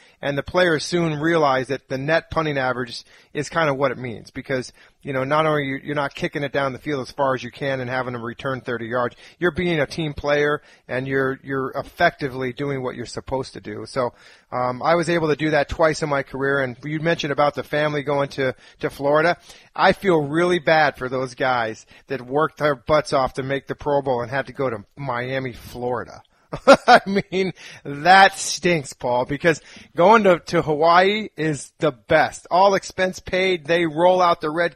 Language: English